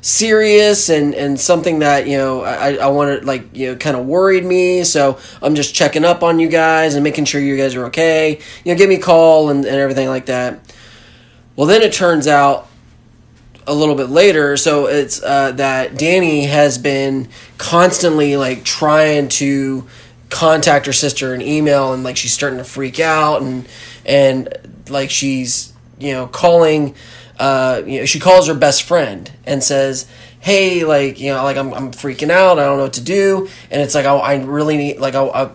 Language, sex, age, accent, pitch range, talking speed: English, male, 20-39, American, 130-155 Hz, 195 wpm